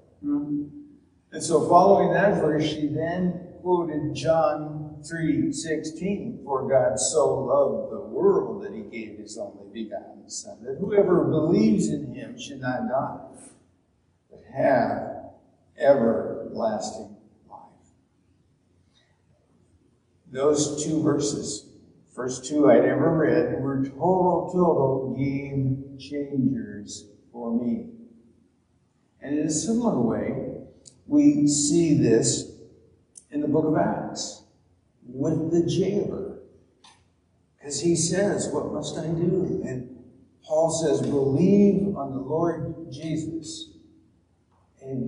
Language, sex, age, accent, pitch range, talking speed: English, male, 60-79, American, 135-180 Hz, 110 wpm